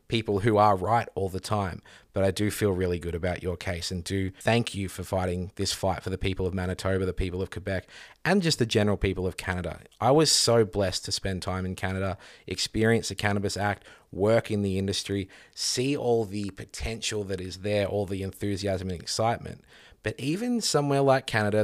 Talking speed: 205 wpm